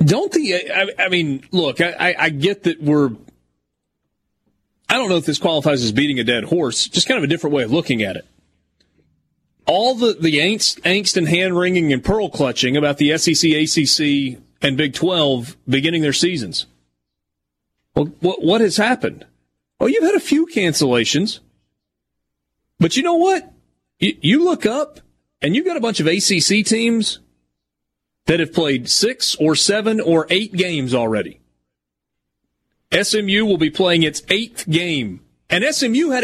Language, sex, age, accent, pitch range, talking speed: English, male, 30-49, American, 125-190 Hz, 165 wpm